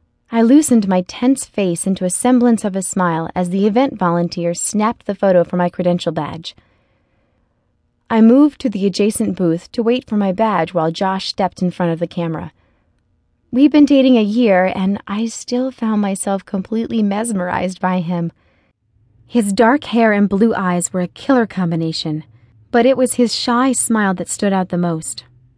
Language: English